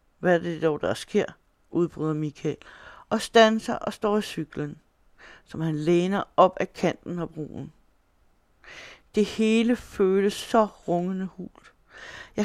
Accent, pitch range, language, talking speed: native, 165-215 Hz, Danish, 145 wpm